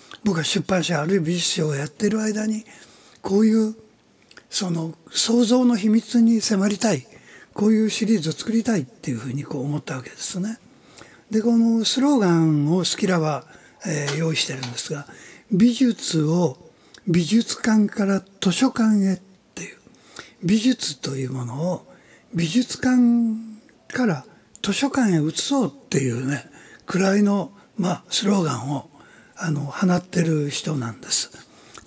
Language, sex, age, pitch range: Japanese, male, 60-79, 155-225 Hz